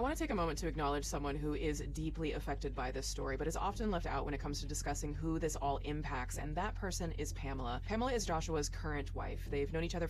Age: 20-39